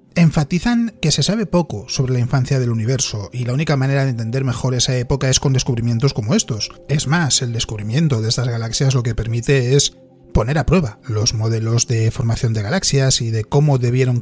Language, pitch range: Spanish, 120-150 Hz